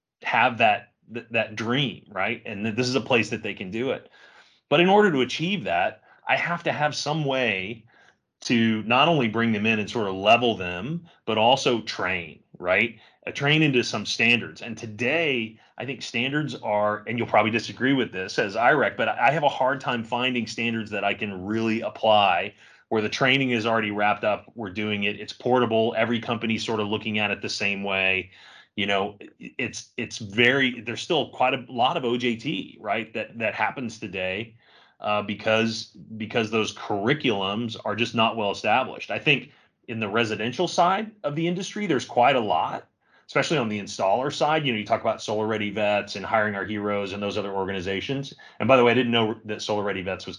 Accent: American